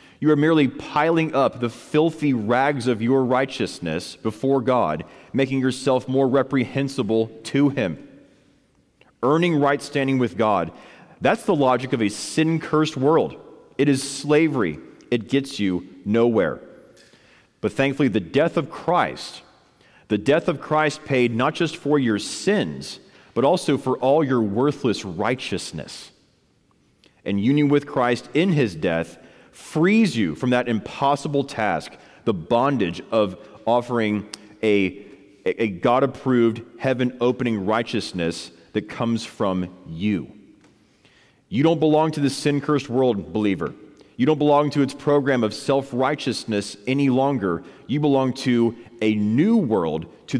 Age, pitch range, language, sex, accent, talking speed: 40-59, 115-140 Hz, English, male, American, 135 wpm